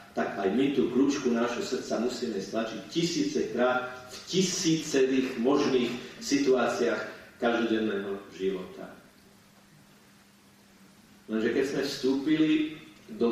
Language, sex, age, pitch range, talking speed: Slovak, male, 40-59, 110-125 Hz, 95 wpm